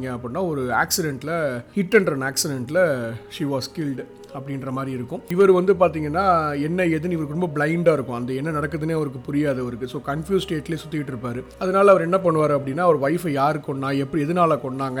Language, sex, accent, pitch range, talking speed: Tamil, male, native, 135-170 Hz, 175 wpm